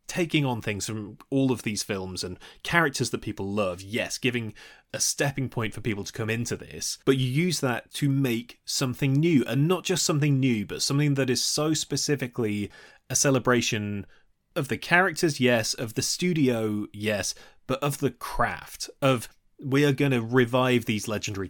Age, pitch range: 20-39, 105-135 Hz